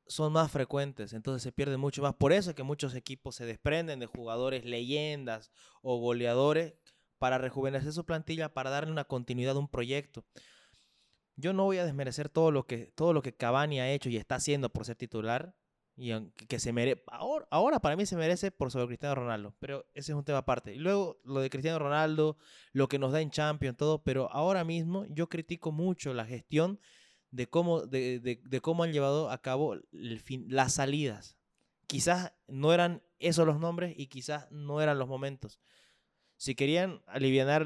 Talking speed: 195 wpm